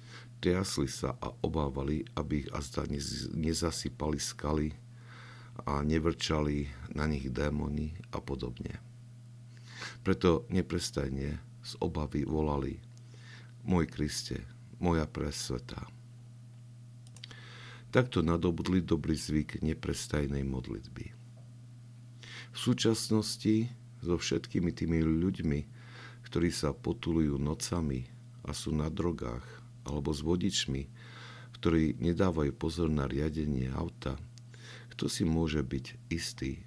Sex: male